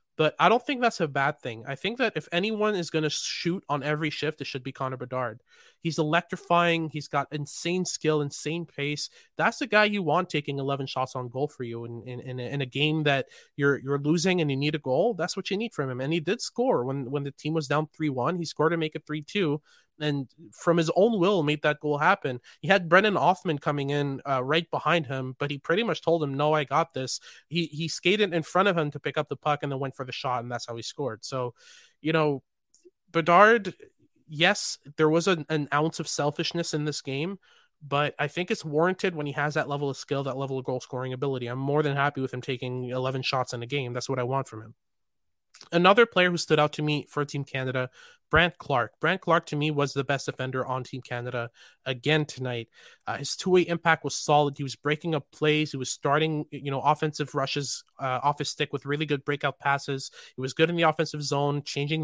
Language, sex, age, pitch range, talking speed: English, male, 20-39, 135-165 Hz, 240 wpm